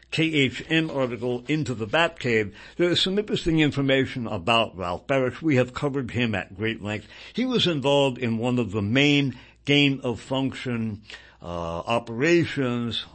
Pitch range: 110-145 Hz